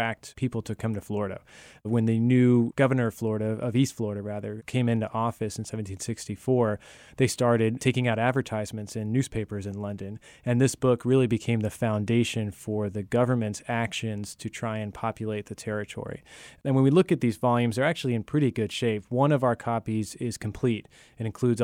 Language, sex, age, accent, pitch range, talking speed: English, male, 20-39, American, 110-125 Hz, 185 wpm